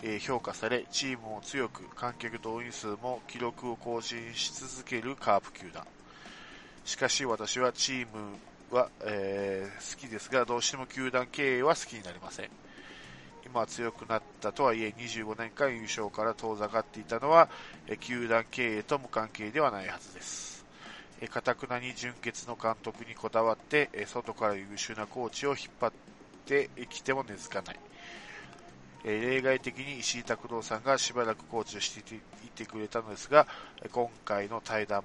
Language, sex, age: Japanese, male, 20-39